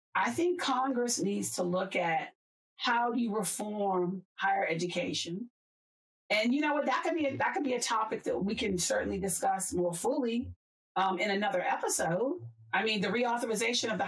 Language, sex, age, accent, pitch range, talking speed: English, female, 40-59, American, 180-255 Hz, 185 wpm